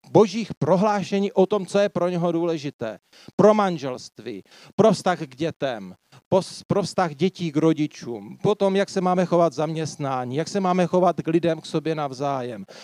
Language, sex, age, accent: Czech, male, 40-59, native